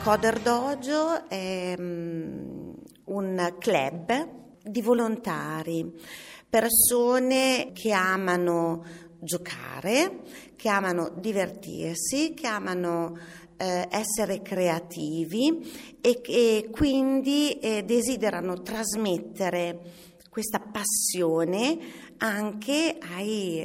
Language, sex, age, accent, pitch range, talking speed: Italian, female, 40-59, native, 175-230 Hz, 70 wpm